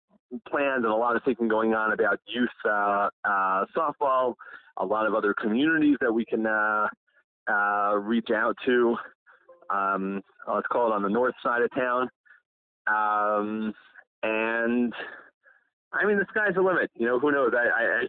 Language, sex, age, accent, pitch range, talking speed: English, male, 30-49, American, 105-130 Hz, 165 wpm